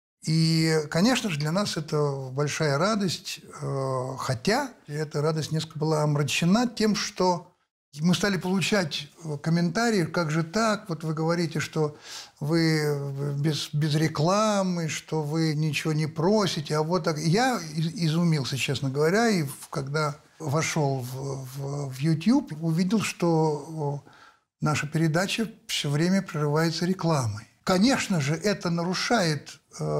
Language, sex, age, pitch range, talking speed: Russian, male, 60-79, 145-200 Hz, 125 wpm